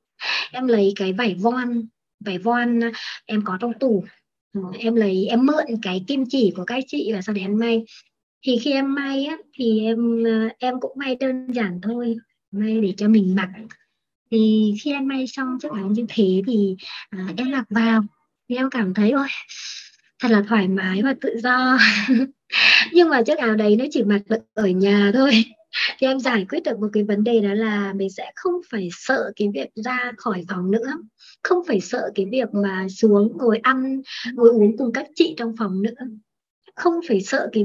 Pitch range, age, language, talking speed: 205-260 Hz, 20-39, Vietnamese, 200 wpm